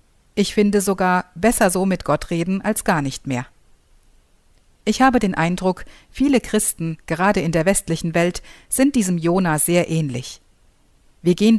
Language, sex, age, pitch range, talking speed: German, female, 50-69, 160-205 Hz, 155 wpm